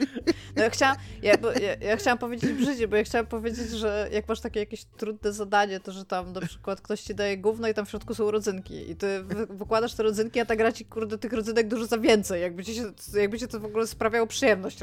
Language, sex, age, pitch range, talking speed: Polish, female, 20-39, 195-240 Hz, 245 wpm